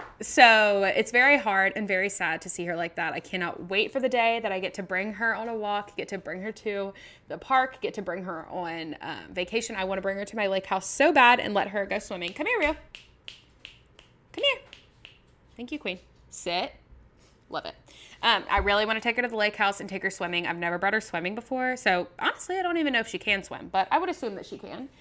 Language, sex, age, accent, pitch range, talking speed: English, female, 10-29, American, 175-230 Hz, 255 wpm